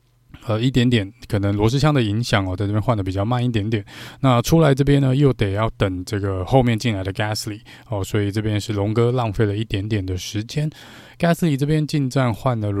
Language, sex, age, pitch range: Chinese, male, 20-39, 105-135 Hz